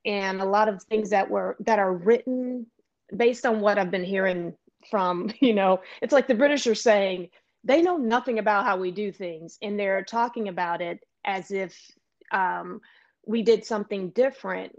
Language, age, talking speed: English, 30-49, 185 wpm